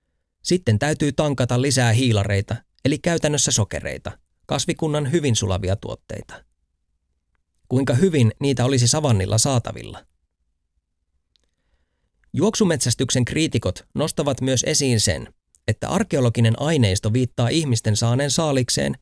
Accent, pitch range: native, 90-140 Hz